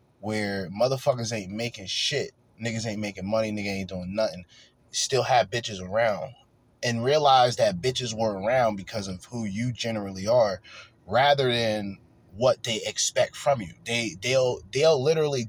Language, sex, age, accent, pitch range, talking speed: English, male, 20-39, American, 110-135 Hz, 155 wpm